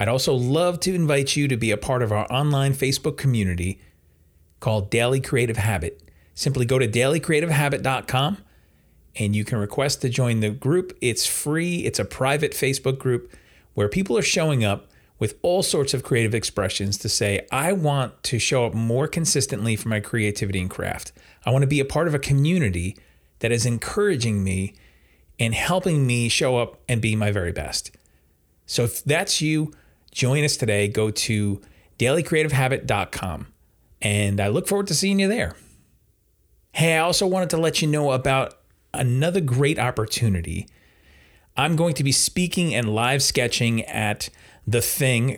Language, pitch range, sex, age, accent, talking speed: English, 105-140 Hz, male, 40-59, American, 170 wpm